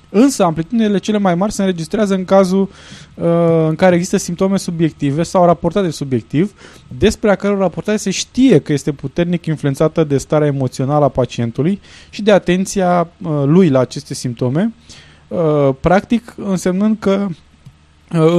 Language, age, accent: Romanian, 20-39, native